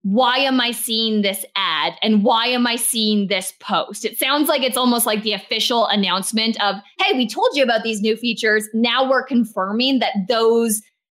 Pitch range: 210-260 Hz